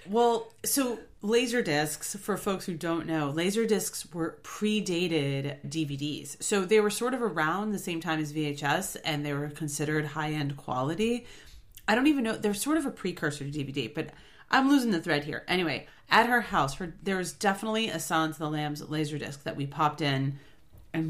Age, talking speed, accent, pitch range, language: 30-49, 195 wpm, American, 150-205 Hz, English